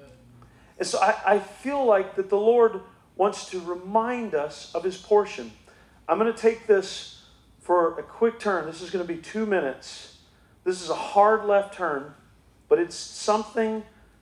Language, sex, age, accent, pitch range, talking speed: English, male, 40-59, American, 135-210 Hz, 175 wpm